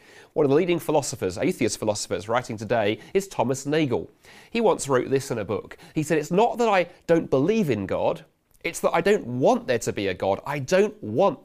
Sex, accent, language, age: male, British, English, 30-49